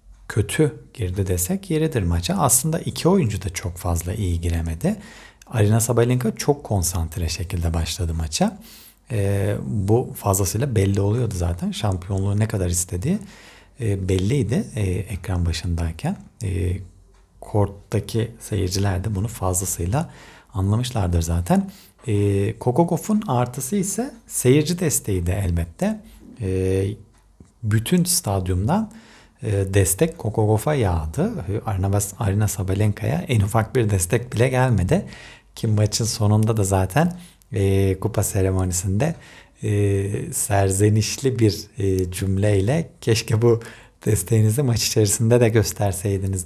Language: Turkish